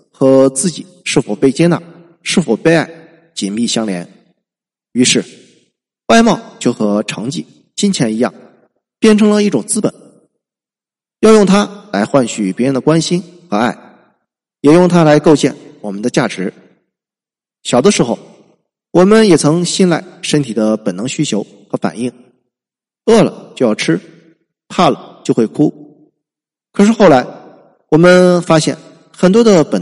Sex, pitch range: male, 135-185 Hz